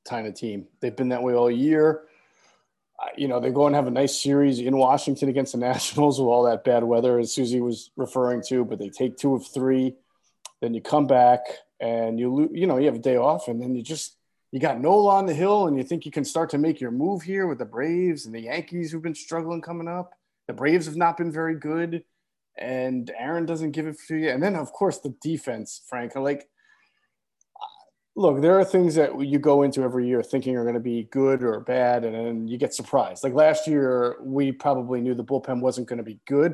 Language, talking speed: English, 235 wpm